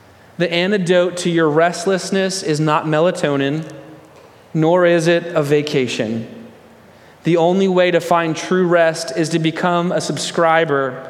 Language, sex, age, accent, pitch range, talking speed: English, male, 30-49, American, 145-180 Hz, 135 wpm